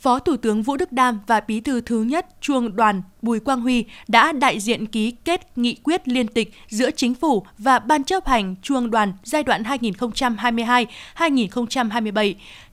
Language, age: Vietnamese, 20-39